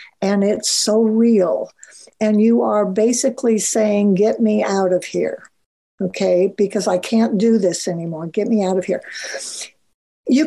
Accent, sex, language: American, female, English